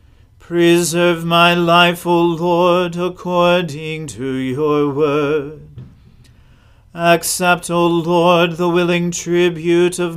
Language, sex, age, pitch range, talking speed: English, male, 40-59, 145-175 Hz, 95 wpm